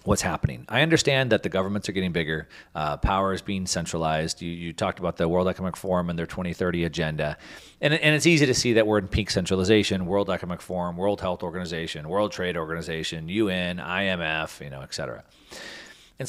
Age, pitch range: 40-59, 85-105 Hz